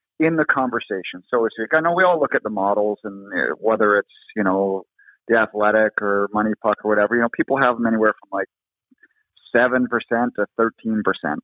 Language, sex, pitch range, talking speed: English, male, 110-140 Hz, 195 wpm